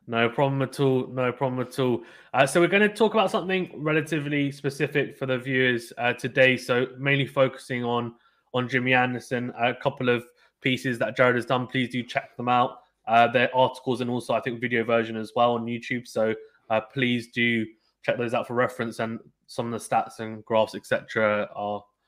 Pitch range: 115-130 Hz